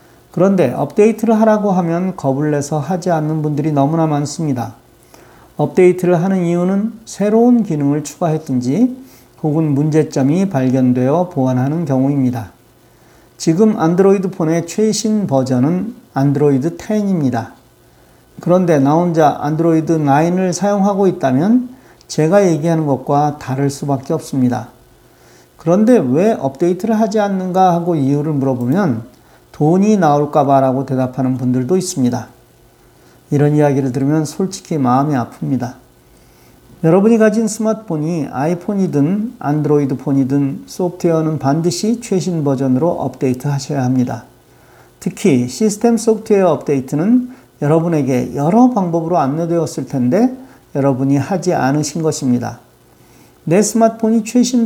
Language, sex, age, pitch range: Korean, male, 40-59, 135-190 Hz